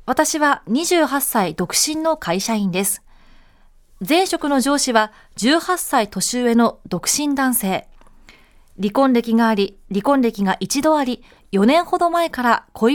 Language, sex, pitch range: Japanese, female, 215-285 Hz